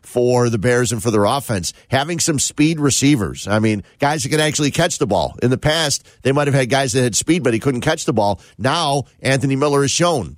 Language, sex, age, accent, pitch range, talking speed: English, male, 50-69, American, 110-145 Hz, 245 wpm